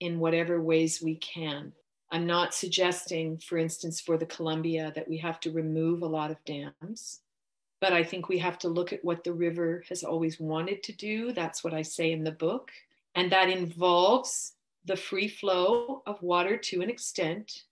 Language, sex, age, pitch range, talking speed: English, female, 40-59, 165-185 Hz, 190 wpm